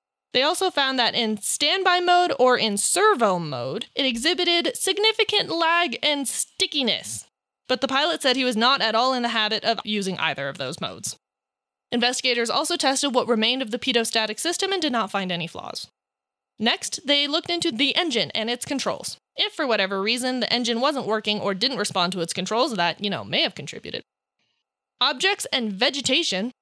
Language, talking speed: English, 185 wpm